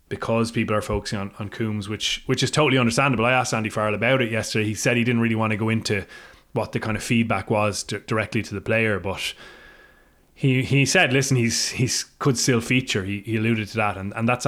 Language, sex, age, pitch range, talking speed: English, male, 20-39, 105-125 Hz, 235 wpm